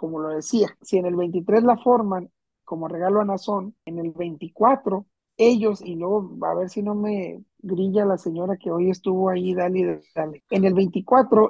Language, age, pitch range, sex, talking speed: Spanish, 50-69, 185-235 Hz, male, 190 wpm